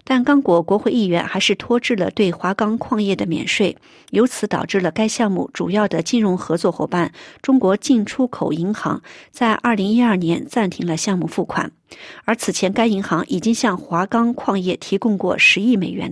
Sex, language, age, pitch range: female, Chinese, 50-69, 180-235 Hz